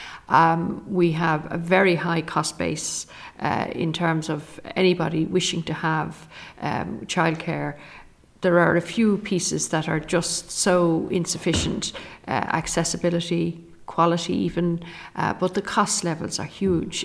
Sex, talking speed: female, 135 wpm